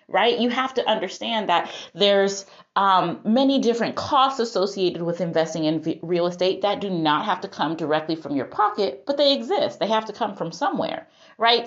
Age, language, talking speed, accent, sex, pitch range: 30-49, English, 190 wpm, American, female, 170-230 Hz